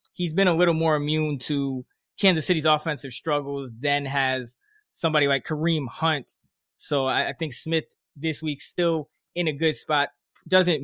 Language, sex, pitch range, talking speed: English, male, 135-155 Hz, 165 wpm